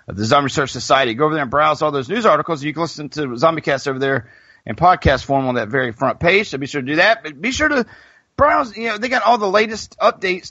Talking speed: 280 wpm